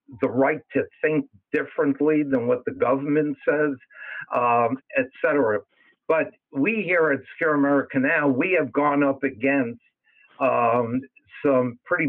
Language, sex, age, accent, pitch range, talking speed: English, male, 60-79, American, 130-155 Hz, 140 wpm